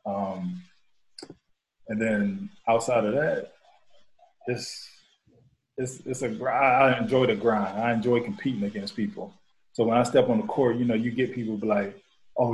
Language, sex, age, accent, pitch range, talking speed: English, male, 20-39, American, 110-130 Hz, 165 wpm